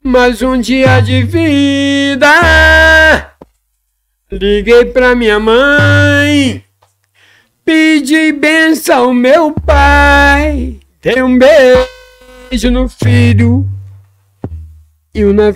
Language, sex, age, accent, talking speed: Portuguese, male, 60-79, Brazilian, 80 wpm